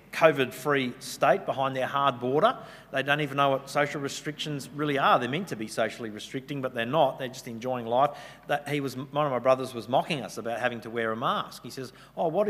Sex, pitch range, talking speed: male, 115-145 Hz, 230 wpm